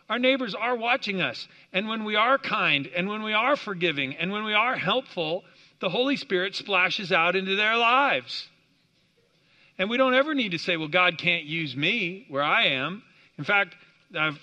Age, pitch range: 50-69, 155-210 Hz